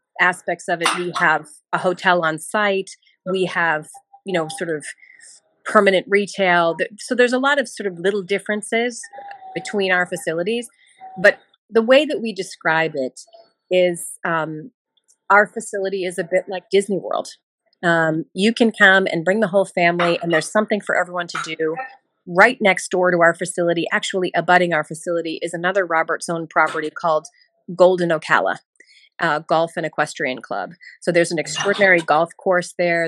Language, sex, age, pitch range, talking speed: English, female, 30-49, 165-200 Hz, 170 wpm